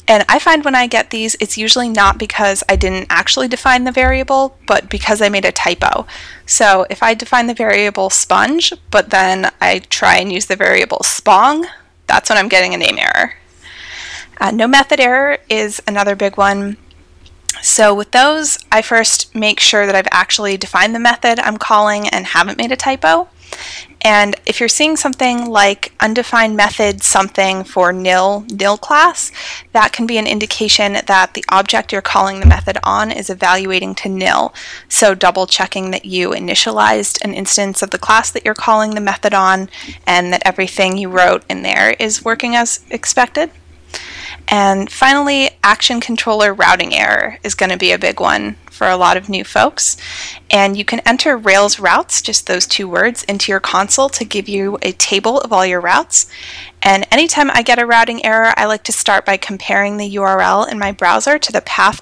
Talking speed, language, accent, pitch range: 190 wpm, English, American, 195-235 Hz